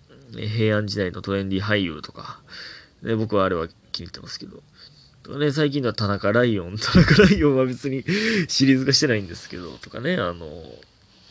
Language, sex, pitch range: Japanese, male, 100-145 Hz